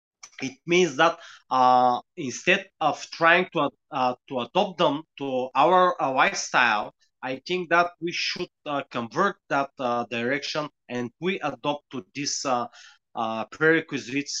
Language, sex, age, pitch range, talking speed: English, male, 30-49, 125-165 Hz, 140 wpm